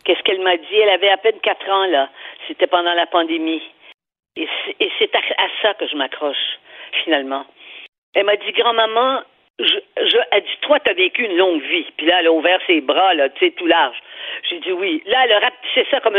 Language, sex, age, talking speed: French, female, 50-69, 220 wpm